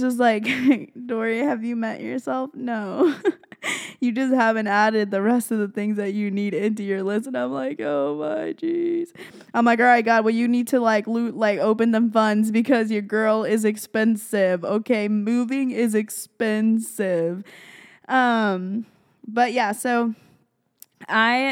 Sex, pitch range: female, 205-255 Hz